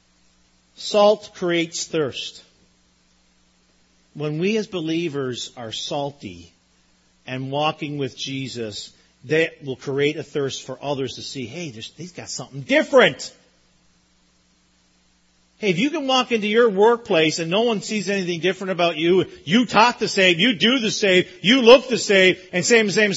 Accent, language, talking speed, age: American, English, 155 wpm, 40-59